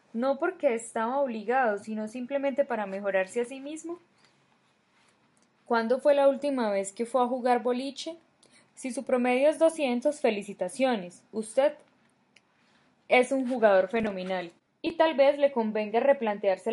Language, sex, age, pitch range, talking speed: Spanish, female, 10-29, 210-270 Hz, 135 wpm